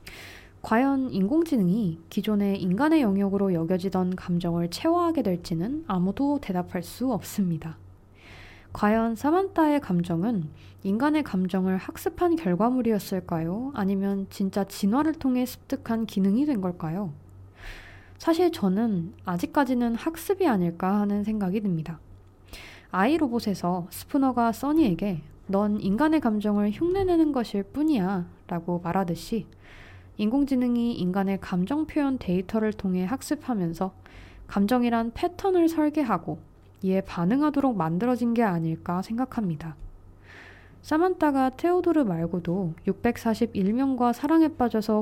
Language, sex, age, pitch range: Korean, female, 20-39, 175-255 Hz